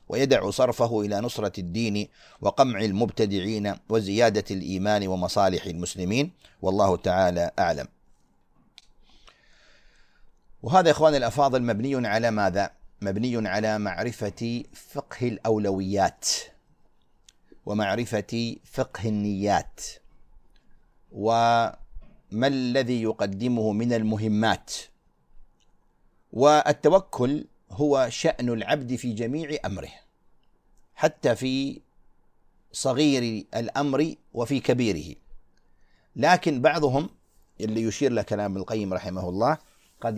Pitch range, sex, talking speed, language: 105-135 Hz, male, 85 wpm, Arabic